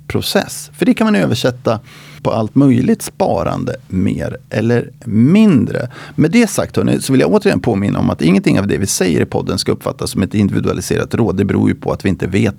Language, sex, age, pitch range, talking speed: Swedish, male, 30-49, 110-145 Hz, 215 wpm